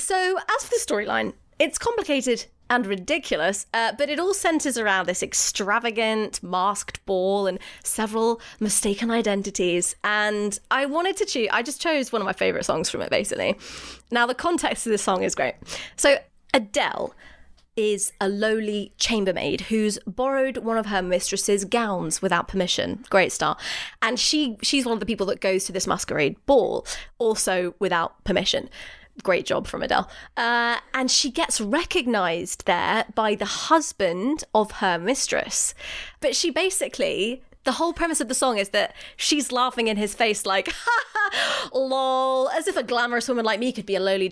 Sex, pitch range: female, 210-310 Hz